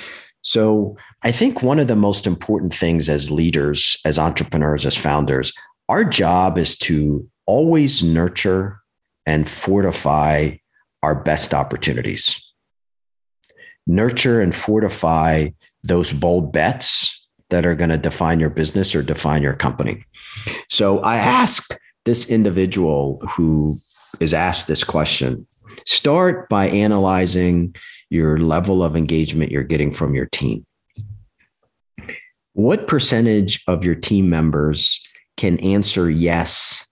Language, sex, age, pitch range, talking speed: English, male, 50-69, 80-100 Hz, 120 wpm